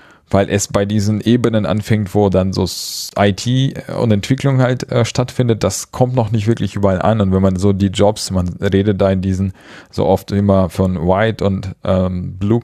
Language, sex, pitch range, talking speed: German, male, 100-115 Hz, 195 wpm